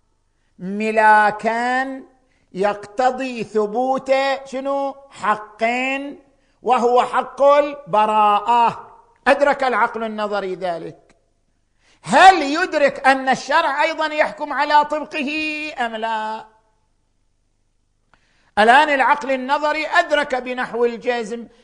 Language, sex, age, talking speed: Arabic, male, 50-69, 75 wpm